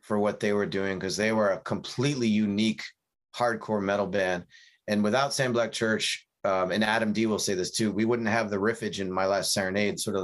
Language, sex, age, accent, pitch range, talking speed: English, male, 30-49, American, 100-120 Hz, 225 wpm